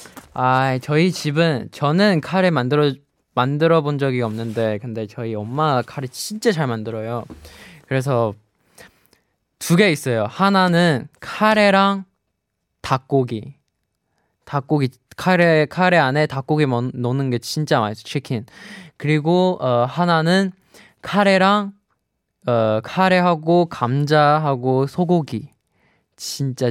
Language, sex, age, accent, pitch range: Korean, male, 20-39, native, 120-150 Hz